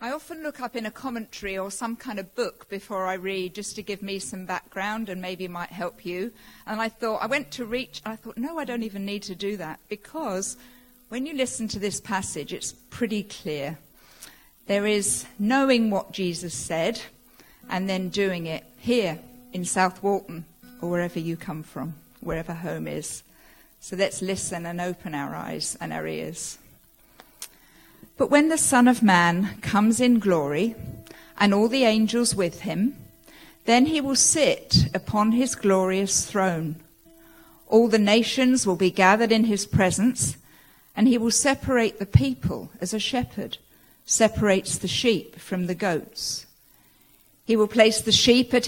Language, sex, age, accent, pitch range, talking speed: English, female, 50-69, British, 185-235 Hz, 170 wpm